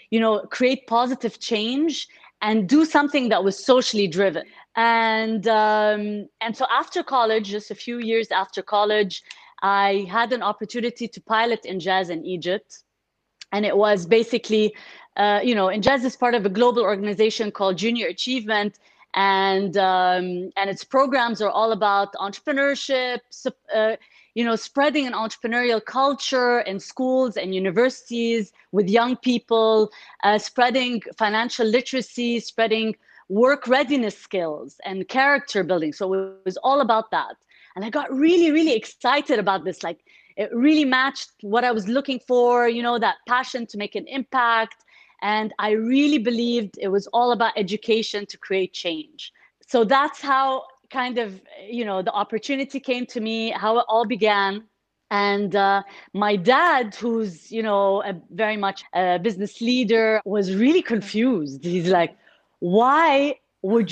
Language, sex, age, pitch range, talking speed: English, female, 20-39, 205-255 Hz, 155 wpm